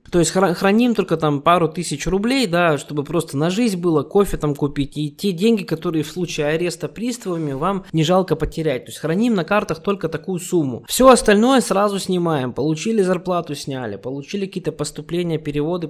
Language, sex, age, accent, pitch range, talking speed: Russian, male, 20-39, native, 145-185 Hz, 180 wpm